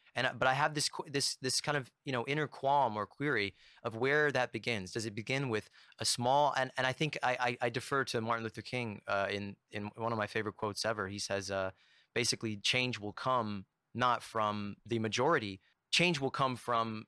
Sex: male